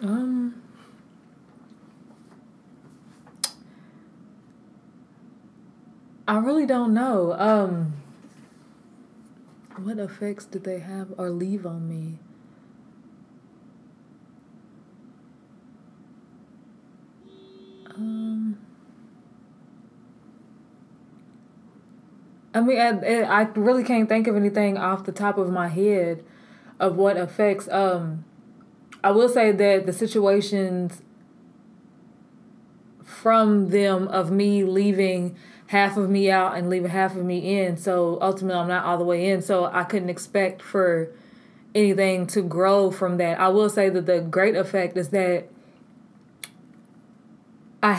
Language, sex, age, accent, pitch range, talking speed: English, female, 20-39, American, 190-230 Hz, 105 wpm